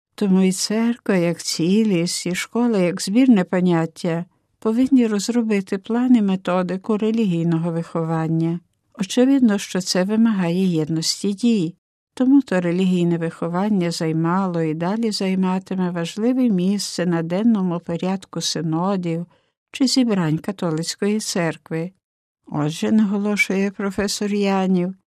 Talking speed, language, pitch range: 105 wpm, Ukrainian, 170-220 Hz